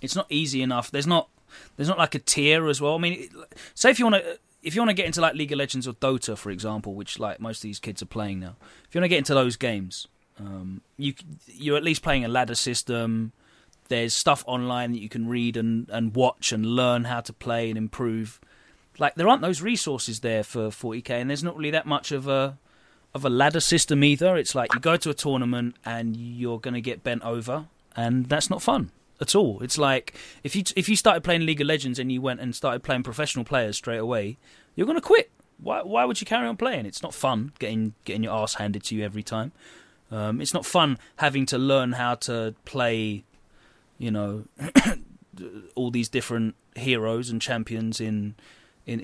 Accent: British